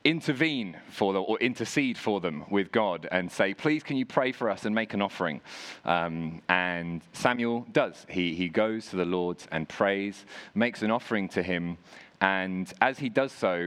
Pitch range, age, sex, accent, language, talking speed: 95-120 Hz, 30-49, male, British, English, 190 wpm